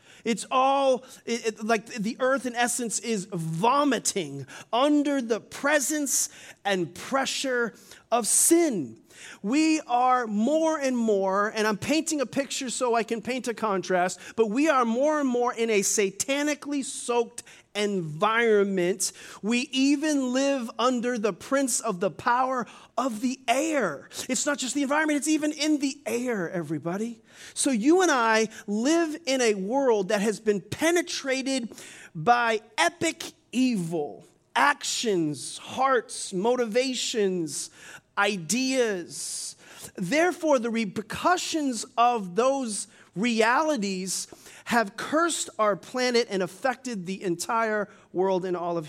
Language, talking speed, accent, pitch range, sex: English, 130 wpm, American, 200-270 Hz, male